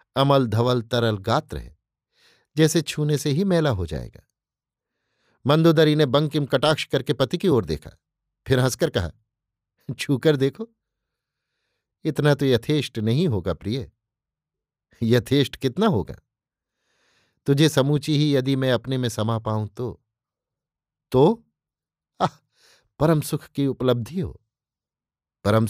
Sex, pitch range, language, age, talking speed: male, 120-150 Hz, Hindi, 50-69, 120 wpm